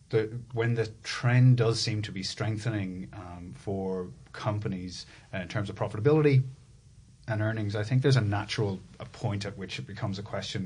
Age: 30-49